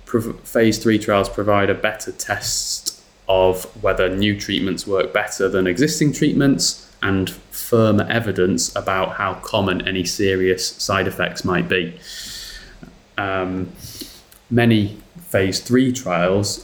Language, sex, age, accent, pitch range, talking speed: English, male, 20-39, British, 95-115 Hz, 120 wpm